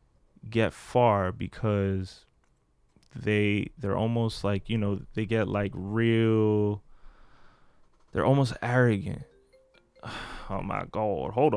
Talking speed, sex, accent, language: 105 wpm, male, American, English